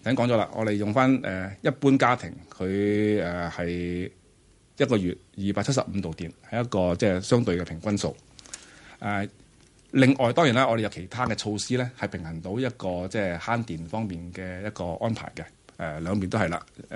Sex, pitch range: male, 95-120 Hz